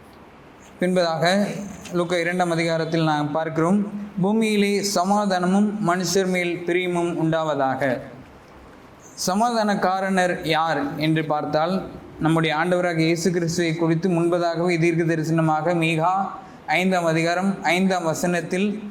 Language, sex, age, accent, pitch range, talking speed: Tamil, male, 20-39, native, 160-185 Hz, 95 wpm